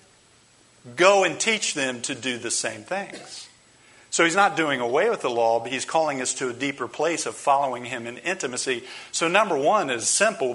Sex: male